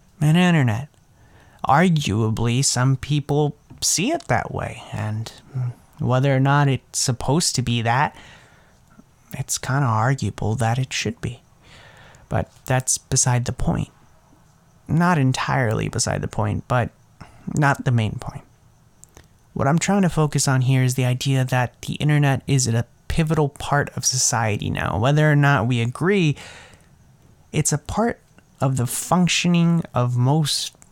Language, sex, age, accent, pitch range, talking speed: English, male, 30-49, American, 125-150 Hz, 145 wpm